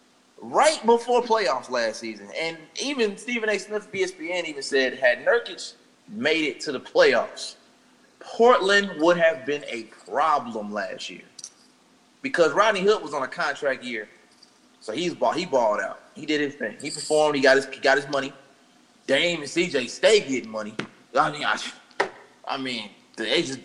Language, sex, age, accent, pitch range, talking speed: English, male, 20-39, American, 135-200 Hz, 165 wpm